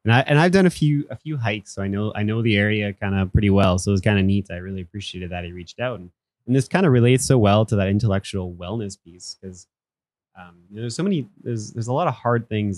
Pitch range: 90-105 Hz